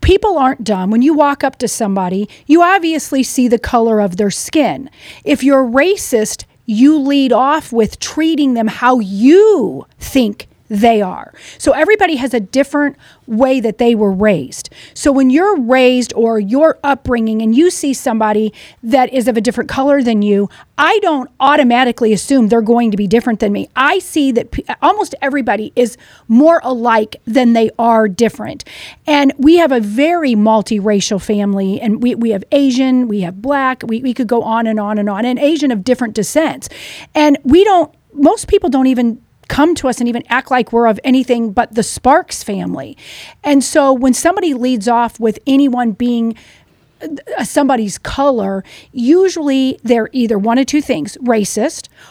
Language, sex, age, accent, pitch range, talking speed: English, female, 40-59, American, 225-285 Hz, 175 wpm